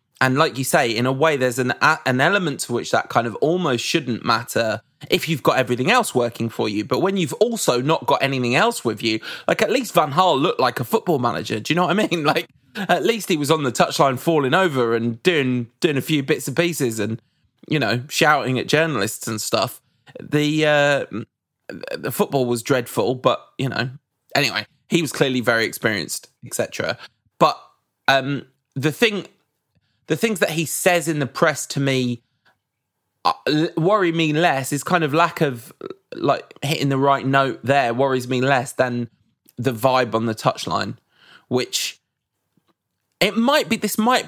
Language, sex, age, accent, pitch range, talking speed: English, male, 20-39, British, 130-175 Hz, 190 wpm